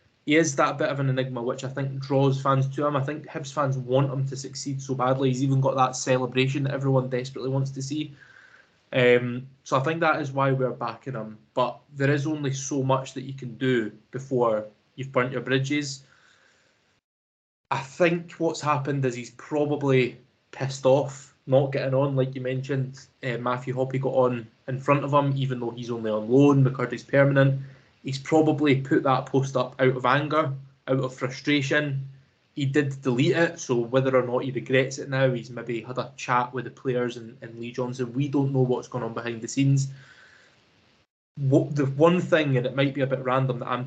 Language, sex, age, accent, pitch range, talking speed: English, male, 20-39, British, 125-140 Hz, 205 wpm